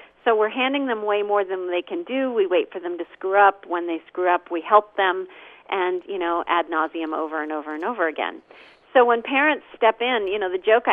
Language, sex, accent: English, female, American